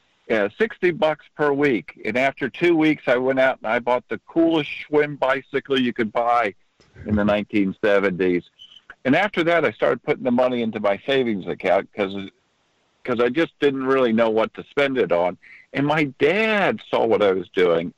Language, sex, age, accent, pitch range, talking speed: English, male, 50-69, American, 105-145 Hz, 190 wpm